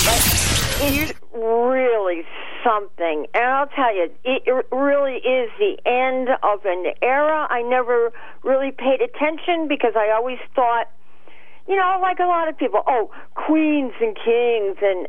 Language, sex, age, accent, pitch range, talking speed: English, female, 50-69, American, 230-290 Hz, 145 wpm